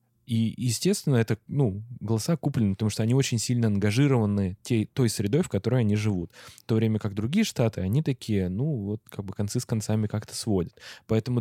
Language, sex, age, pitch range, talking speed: Russian, male, 20-39, 105-125 Hz, 195 wpm